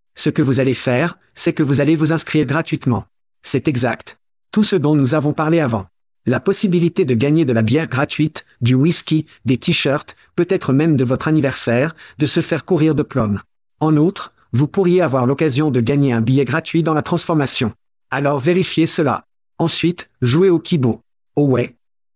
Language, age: French, 50-69